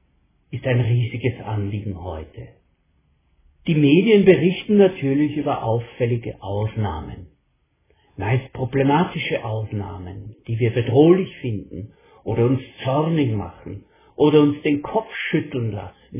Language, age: German, 60-79